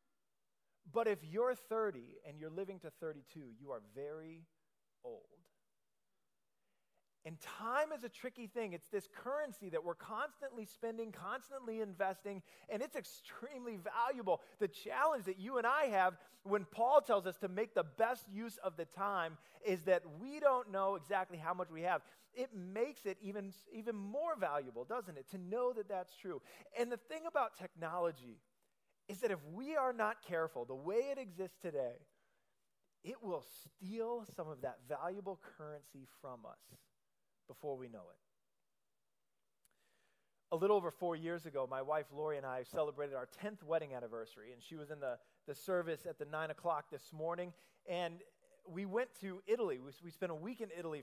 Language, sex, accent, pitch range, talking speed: English, male, American, 160-230 Hz, 175 wpm